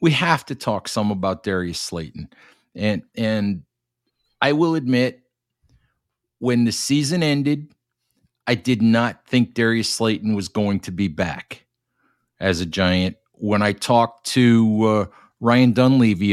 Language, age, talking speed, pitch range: English, 50-69, 140 wpm, 105-125 Hz